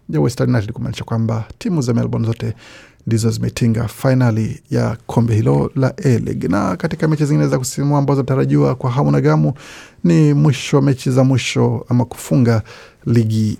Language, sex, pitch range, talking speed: Swahili, male, 115-140 Hz, 170 wpm